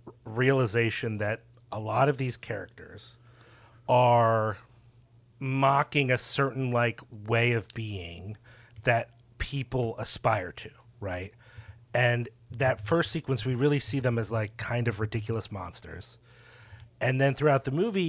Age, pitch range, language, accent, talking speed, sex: 30-49, 115-140 Hz, English, American, 130 wpm, male